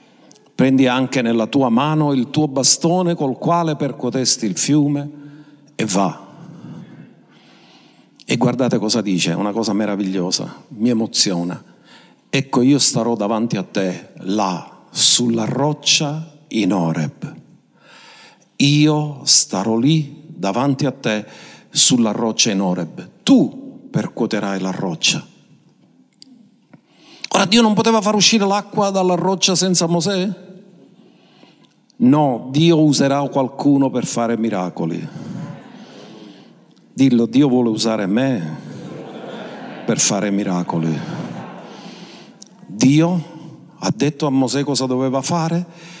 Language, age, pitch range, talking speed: Italian, 50-69, 115-160 Hz, 110 wpm